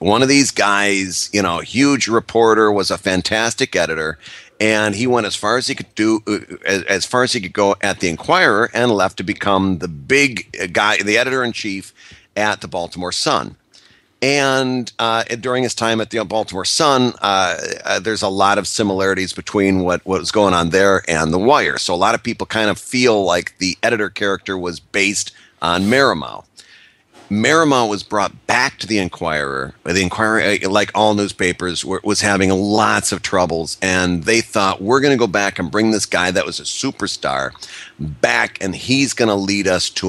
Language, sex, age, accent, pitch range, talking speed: English, male, 40-59, American, 95-115 Hz, 190 wpm